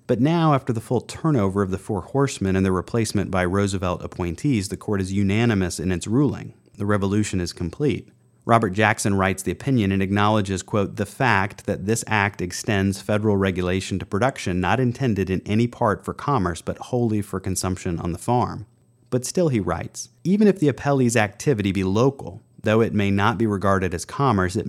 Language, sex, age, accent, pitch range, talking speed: English, male, 30-49, American, 95-120 Hz, 190 wpm